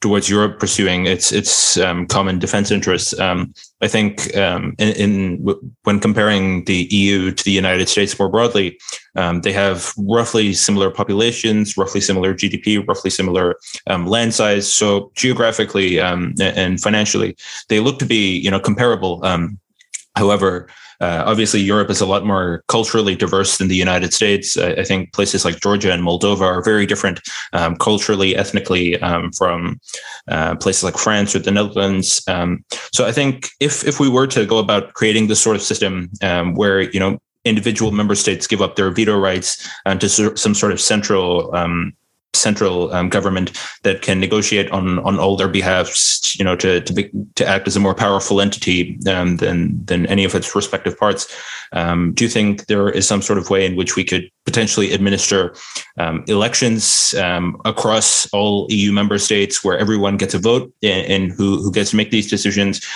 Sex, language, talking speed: male, English, 185 wpm